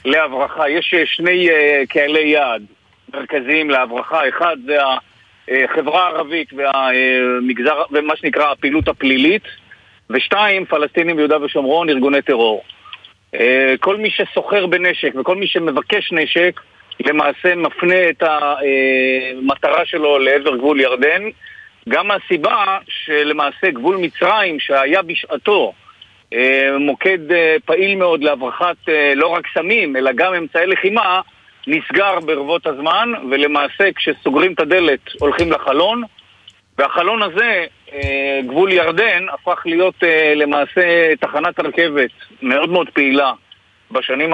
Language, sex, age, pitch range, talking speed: Hebrew, male, 50-69, 140-180 Hz, 105 wpm